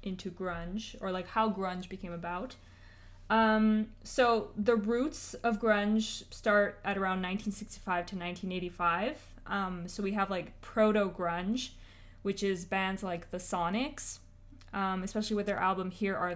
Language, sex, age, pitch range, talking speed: English, female, 20-39, 185-220 Hz, 145 wpm